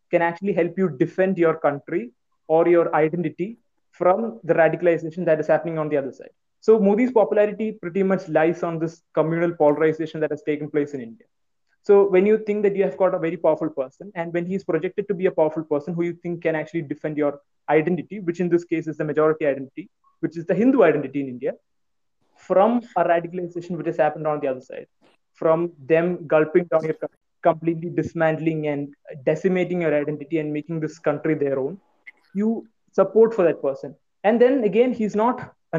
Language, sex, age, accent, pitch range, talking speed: English, male, 20-39, Indian, 155-190 Hz, 200 wpm